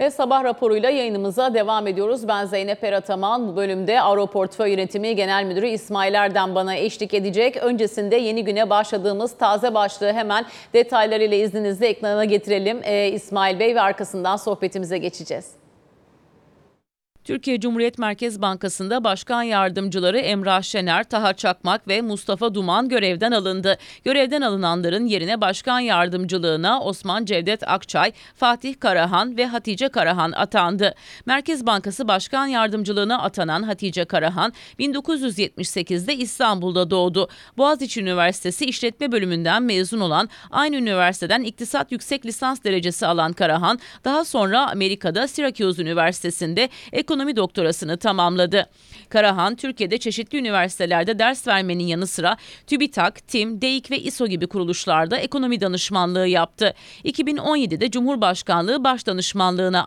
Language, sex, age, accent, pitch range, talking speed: Turkish, female, 40-59, native, 190-240 Hz, 120 wpm